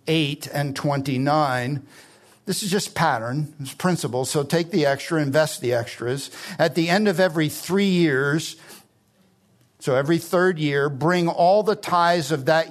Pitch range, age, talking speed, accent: 140-175 Hz, 50-69, 155 wpm, American